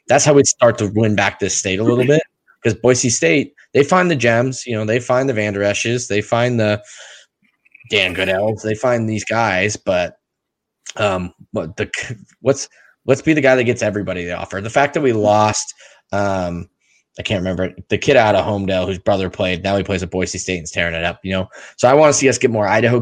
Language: English